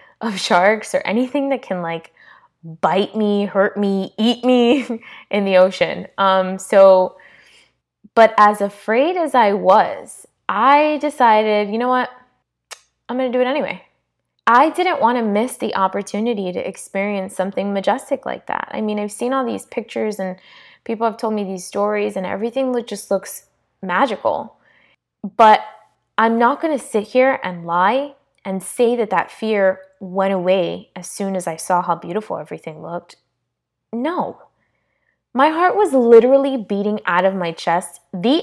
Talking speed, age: 155 wpm, 20-39